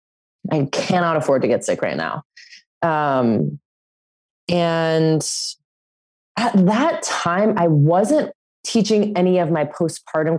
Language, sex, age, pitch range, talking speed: English, female, 20-39, 150-200 Hz, 115 wpm